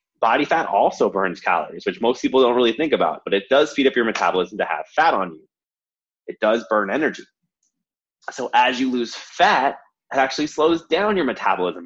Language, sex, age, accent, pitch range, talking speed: English, male, 30-49, American, 115-170 Hz, 195 wpm